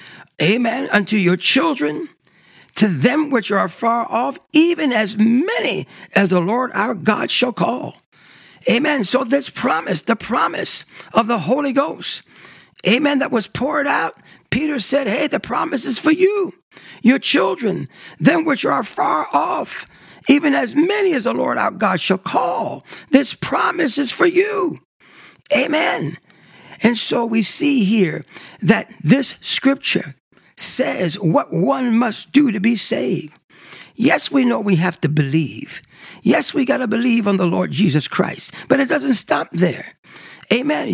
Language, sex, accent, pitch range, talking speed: English, male, American, 205-280 Hz, 155 wpm